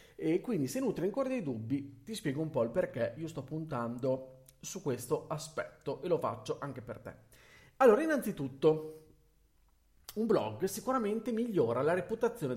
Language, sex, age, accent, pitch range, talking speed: Italian, male, 40-59, native, 130-180 Hz, 160 wpm